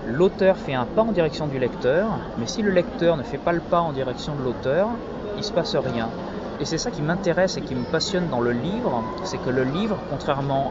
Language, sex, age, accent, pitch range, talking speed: French, male, 30-49, French, 120-180 Hz, 240 wpm